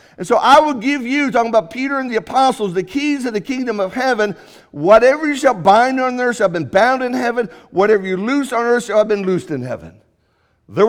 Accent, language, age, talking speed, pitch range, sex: American, English, 50-69, 235 wpm, 165-245 Hz, male